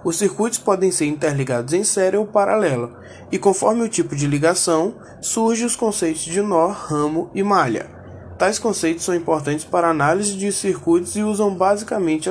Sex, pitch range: male, 155-205 Hz